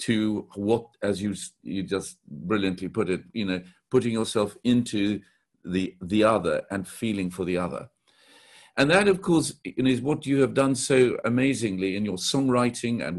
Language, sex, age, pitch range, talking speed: English, male, 50-69, 100-135 Hz, 170 wpm